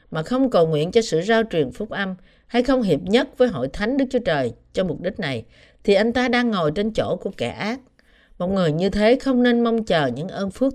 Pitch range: 165-235 Hz